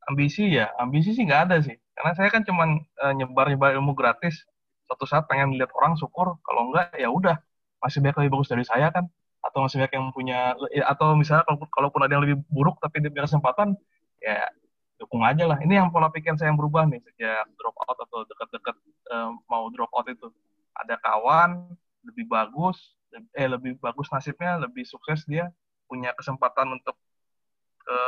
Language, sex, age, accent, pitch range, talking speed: Indonesian, male, 20-39, native, 130-170 Hz, 180 wpm